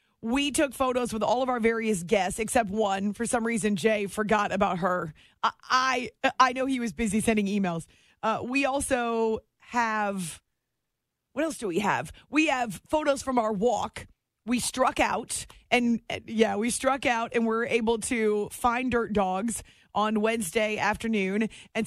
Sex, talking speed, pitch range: female, 170 wpm, 215-260 Hz